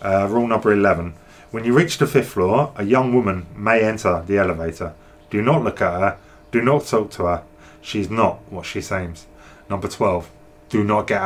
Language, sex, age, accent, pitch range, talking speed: English, male, 20-39, British, 95-120 Hz, 195 wpm